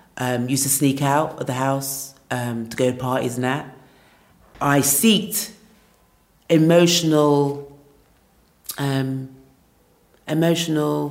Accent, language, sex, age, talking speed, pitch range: British, English, female, 40-59, 110 wpm, 125-145 Hz